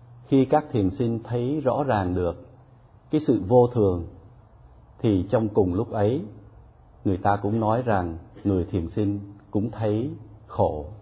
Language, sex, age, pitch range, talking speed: Vietnamese, male, 60-79, 105-125 Hz, 150 wpm